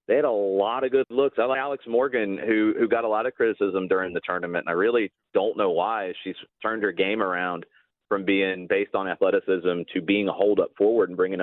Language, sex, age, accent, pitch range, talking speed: English, male, 30-49, American, 105-140 Hz, 230 wpm